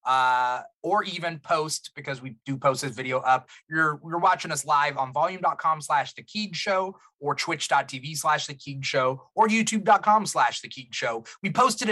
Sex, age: male, 30-49